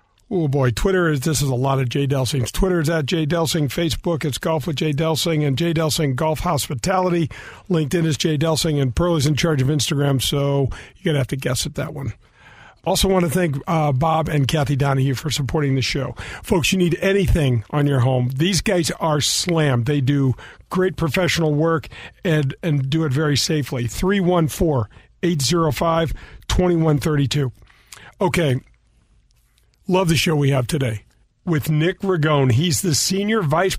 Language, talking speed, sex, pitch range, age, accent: English, 170 wpm, male, 140-175 Hz, 50-69, American